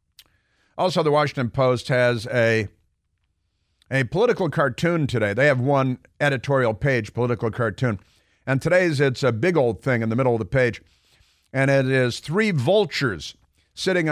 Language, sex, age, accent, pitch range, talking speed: English, male, 50-69, American, 115-145 Hz, 155 wpm